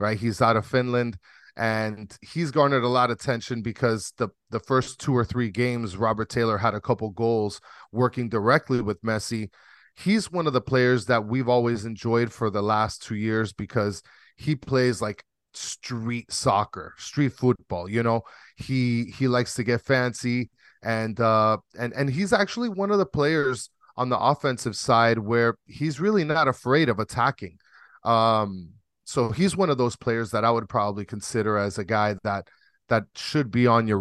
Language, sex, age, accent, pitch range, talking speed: English, male, 30-49, American, 110-125 Hz, 180 wpm